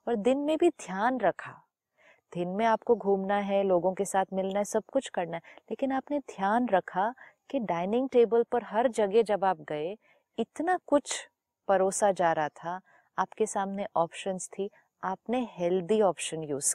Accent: native